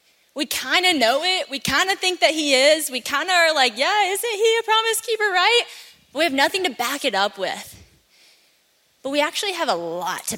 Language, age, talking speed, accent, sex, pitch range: English, 10-29, 225 wpm, American, female, 210-300 Hz